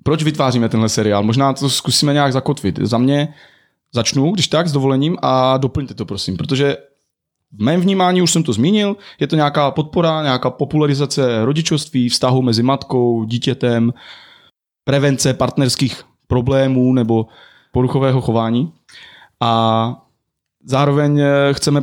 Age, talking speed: 30-49, 130 wpm